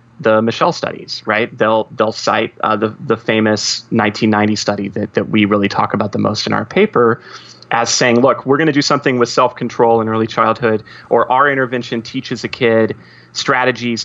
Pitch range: 115-135 Hz